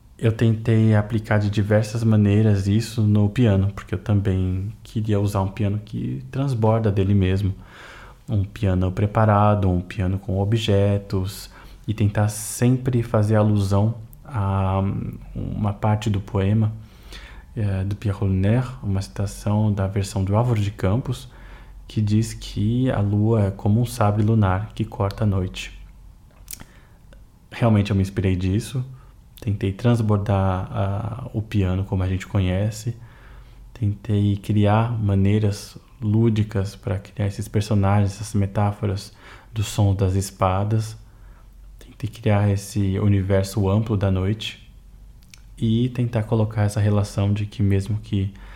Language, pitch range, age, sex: Hungarian, 100-110 Hz, 20-39, male